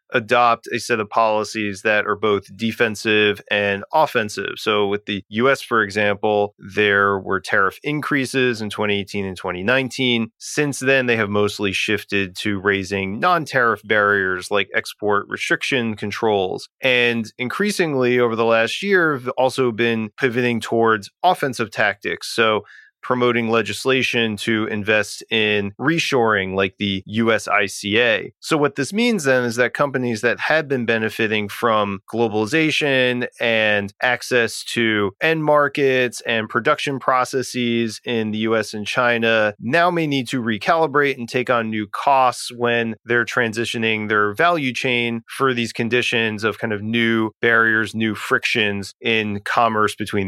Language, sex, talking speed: English, male, 140 wpm